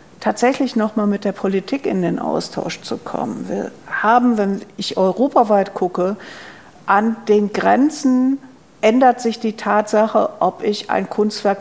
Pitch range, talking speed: 195-235 Hz, 145 wpm